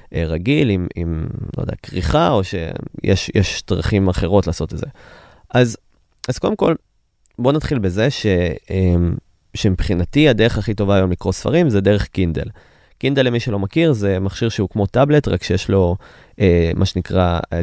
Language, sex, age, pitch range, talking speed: Hebrew, male, 20-39, 90-110 Hz, 155 wpm